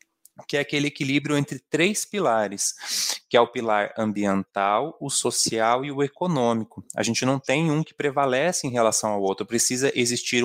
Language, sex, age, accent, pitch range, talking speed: Portuguese, male, 20-39, Brazilian, 110-140 Hz, 170 wpm